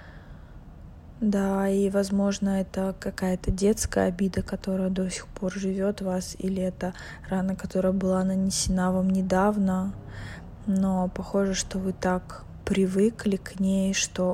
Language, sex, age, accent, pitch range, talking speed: Russian, female, 20-39, native, 185-210 Hz, 130 wpm